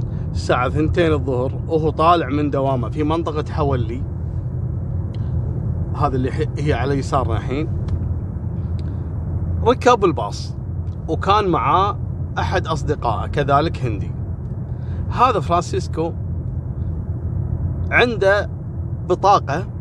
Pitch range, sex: 95-140 Hz, male